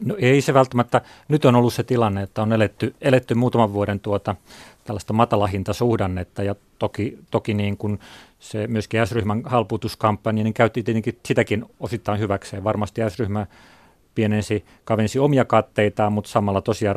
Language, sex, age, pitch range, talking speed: Finnish, male, 30-49, 100-115 Hz, 150 wpm